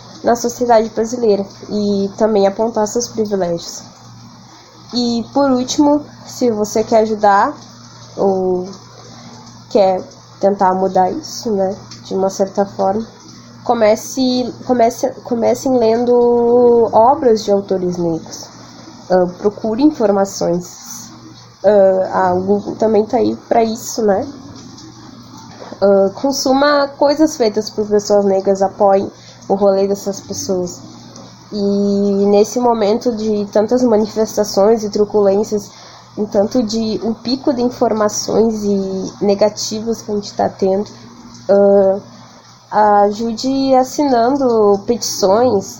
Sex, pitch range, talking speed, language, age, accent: female, 195-235 Hz, 110 wpm, English, 10-29, Brazilian